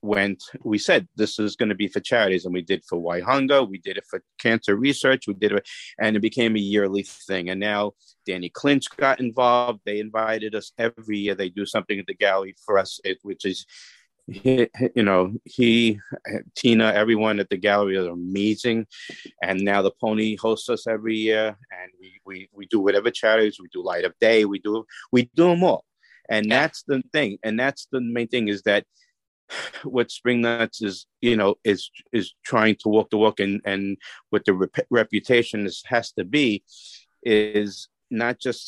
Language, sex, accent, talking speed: English, male, American, 195 wpm